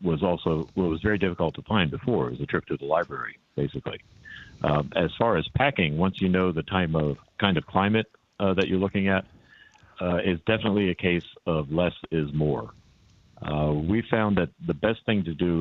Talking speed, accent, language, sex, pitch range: 205 wpm, American, English, male, 80-95 Hz